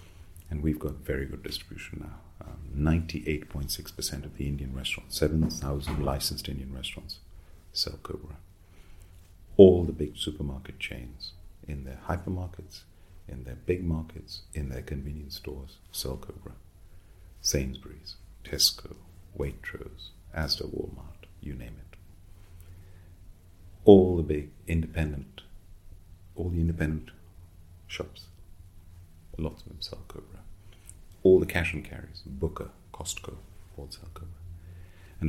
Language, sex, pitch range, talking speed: English, male, 75-90 Hz, 115 wpm